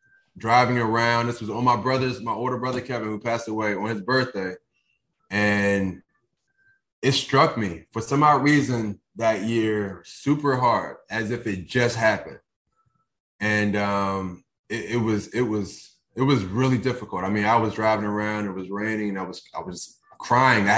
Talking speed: 175 wpm